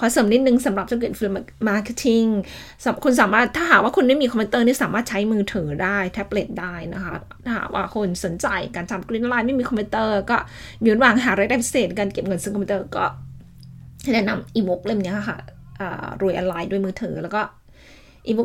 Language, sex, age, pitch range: Thai, female, 20-39, 190-230 Hz